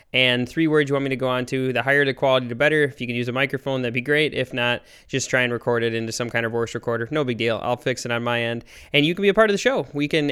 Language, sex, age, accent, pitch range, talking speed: English, male, 20-39, American, 125-145 Hz, 335 wpm